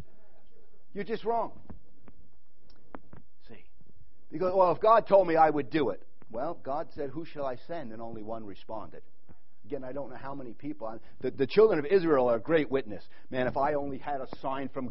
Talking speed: 200 wpm